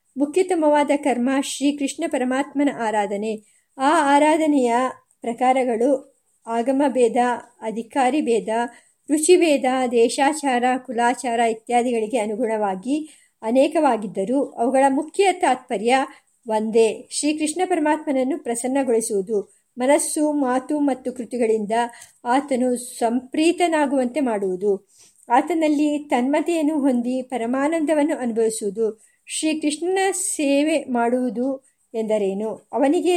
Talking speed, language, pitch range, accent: 80 wpm, Kannada, 230-285 Hz, native